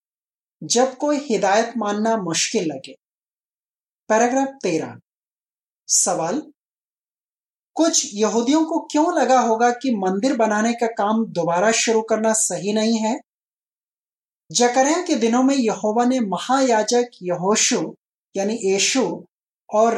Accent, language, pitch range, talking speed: native, Hindi, 200-260 Hz, 110 wpm